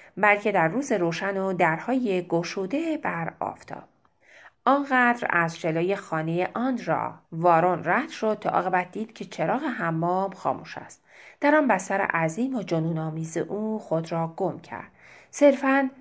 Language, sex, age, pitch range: Persian, female, 30-49, 170-235 Hz